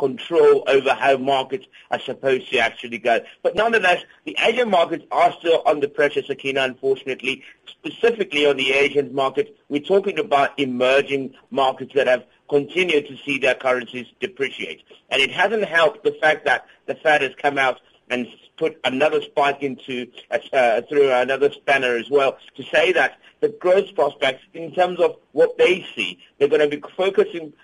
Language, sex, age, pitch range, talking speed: English, male, 50-69, 130-185 Hz, 165 wpm